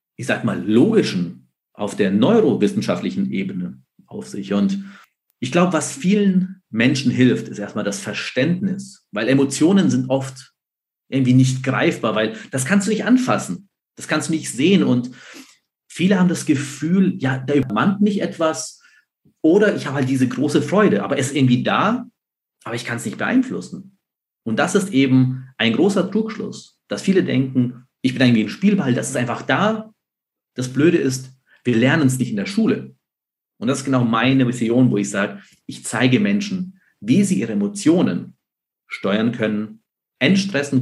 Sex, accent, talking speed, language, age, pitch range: male, German, 170 wpm, German, 40-59, 125-195 Hz